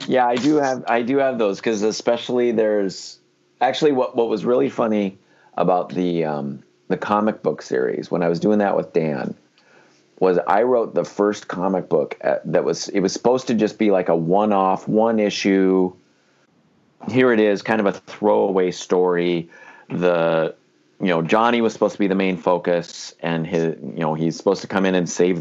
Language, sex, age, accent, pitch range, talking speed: English, male, 40-59, American, 85-115 Hz, 195 wpm